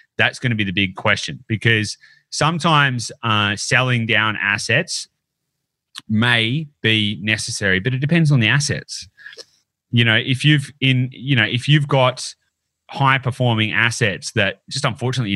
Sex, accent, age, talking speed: male, Australian, 30-49, 150 wpm